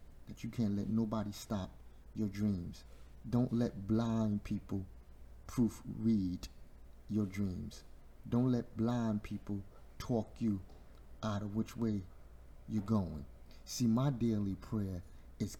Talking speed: 125 wpm